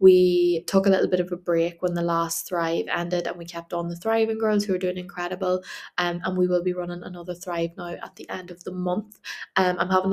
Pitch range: 170-185 Hz